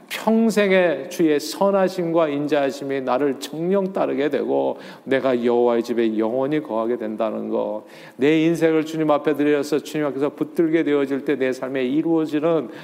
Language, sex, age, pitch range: Korean, male, 40-59, 125-160 Hz